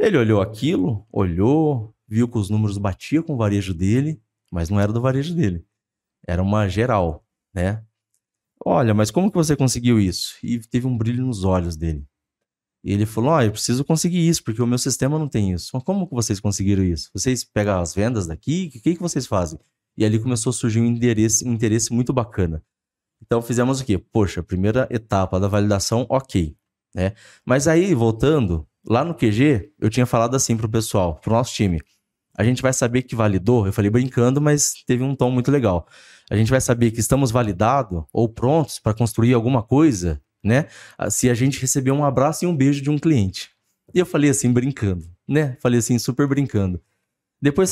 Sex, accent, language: male, Brazilian, Portuguese